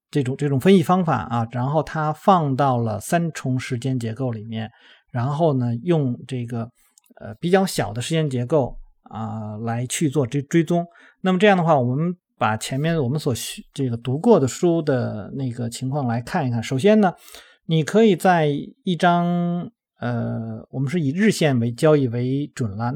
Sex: male